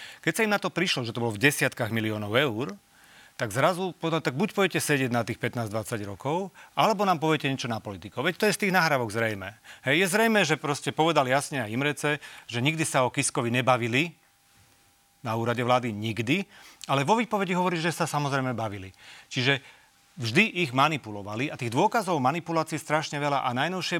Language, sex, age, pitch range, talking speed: Slovak, male, 40-59, 120-160 Hz, 190 wpm